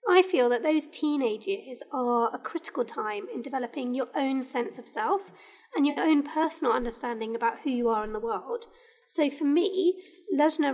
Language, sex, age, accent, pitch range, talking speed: English, female, 20-39, British, 245-315 Hz, 185 wpm